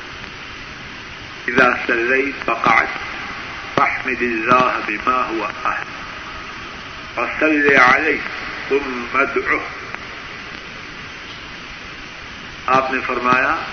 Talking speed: 75 wpm